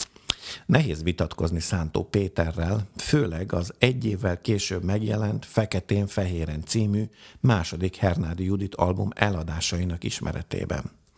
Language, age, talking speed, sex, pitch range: Hungarian, 50-69, 95 wpm, male, 90-110 Hz